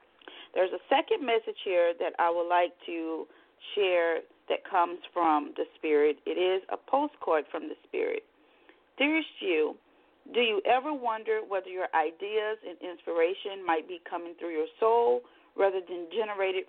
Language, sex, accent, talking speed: English, female, American, 155 wpm